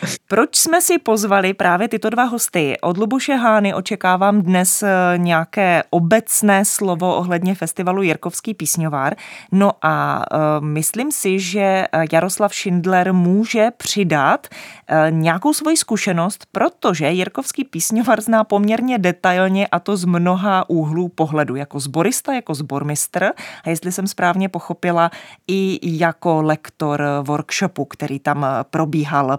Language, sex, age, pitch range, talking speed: Czech, female, 20-39, 160-210 Hz, 125 wpm